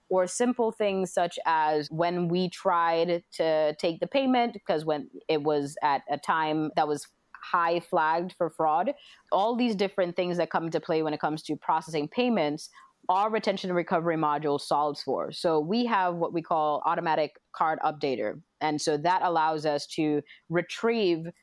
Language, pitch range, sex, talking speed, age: English, 150-180 Hz, female, 175 wpm, 20-39